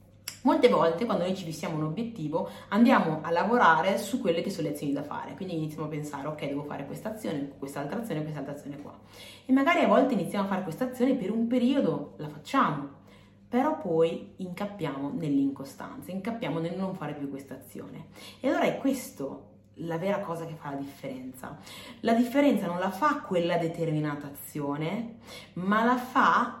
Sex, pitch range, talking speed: female, 160-250 Hz, 185 wpm